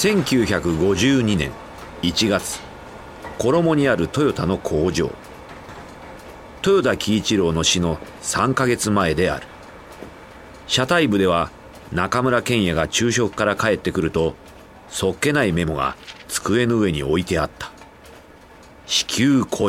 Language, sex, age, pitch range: Japanese, male, 40-59, 85-125 Hz